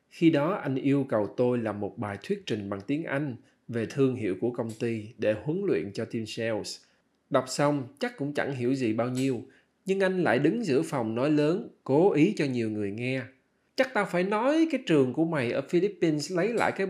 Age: 20-39